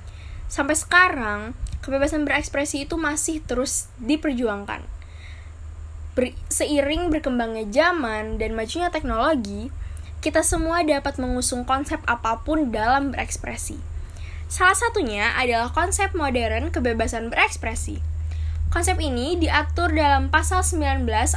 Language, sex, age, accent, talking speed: Indonesian, female, 10-29, native, 100 wpm